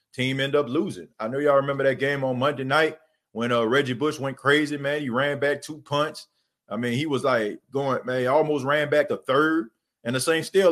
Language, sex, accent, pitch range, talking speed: English, male, American, 125-150 Hz, 235 wpm